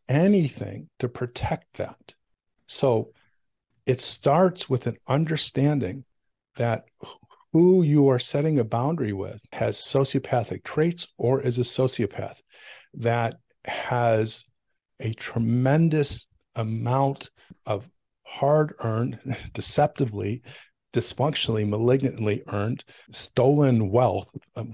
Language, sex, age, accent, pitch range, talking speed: English, male, 50-69, American, 110-135 Hz, 90 wpm